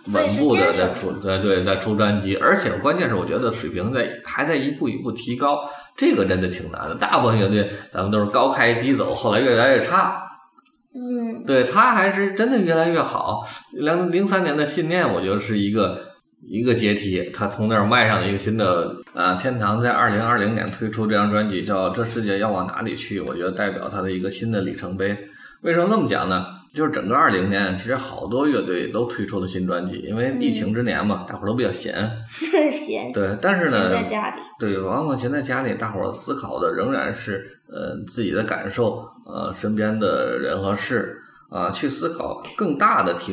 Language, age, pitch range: Chinese, 20-39, 95-125 Hz